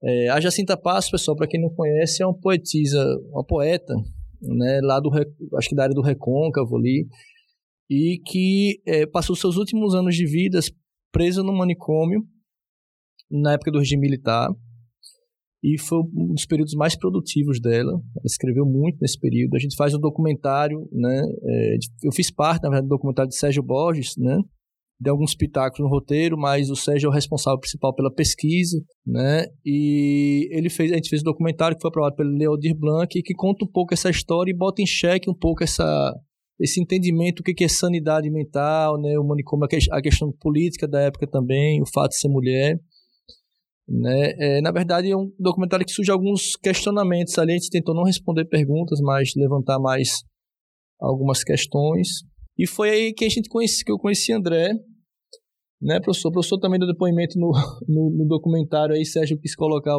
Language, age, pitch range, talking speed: Portuguese, 20-39, 140-175 Hz, 190 wpm